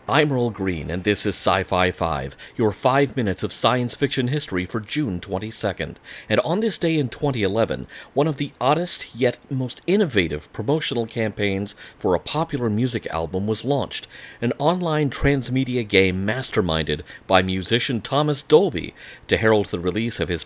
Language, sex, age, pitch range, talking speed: English, male, 40-59, 90-130 Hz, 160 wpm